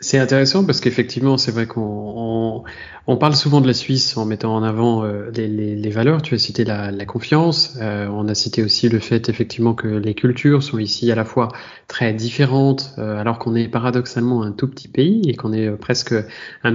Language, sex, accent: French, male, French